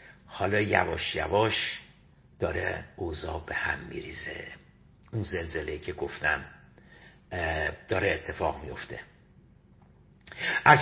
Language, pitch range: Persian, 100-130 Hz